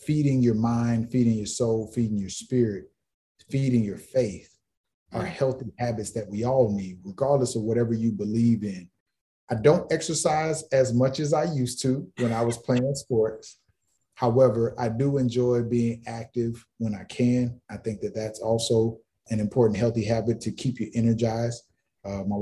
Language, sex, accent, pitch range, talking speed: English, male, American, 110-125 Hz, 170 wpm